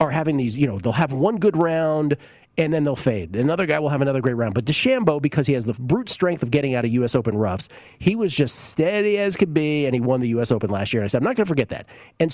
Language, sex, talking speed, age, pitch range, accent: English, male, 295 wpm, 40-59, 120-165 Hz, American